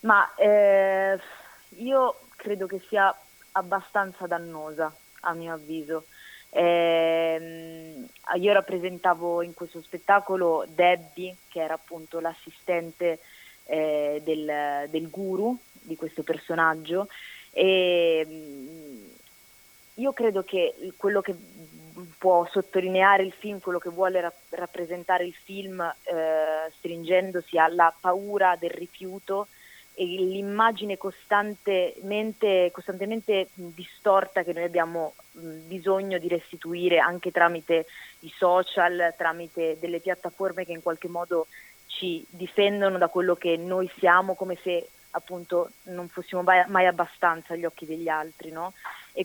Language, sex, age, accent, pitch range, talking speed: Italian, female, 20-39, native, 165-190 Hz, 110 wpm